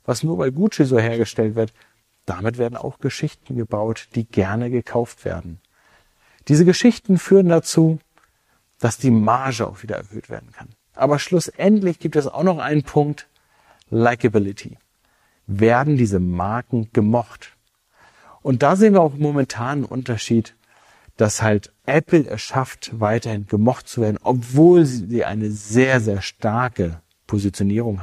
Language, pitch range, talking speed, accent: German, 110-140 Hz, 140 wpm, German